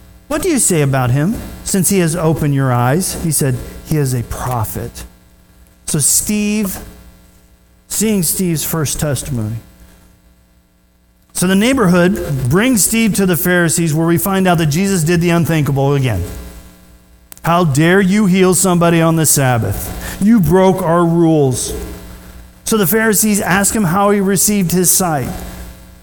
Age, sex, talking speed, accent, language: 40-59, male, 150 wpm, American, English